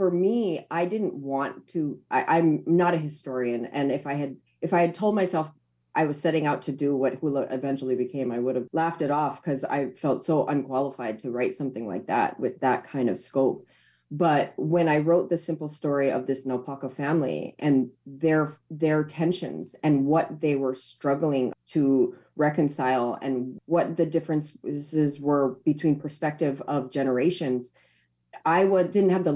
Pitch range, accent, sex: 140-195 Hz, American, female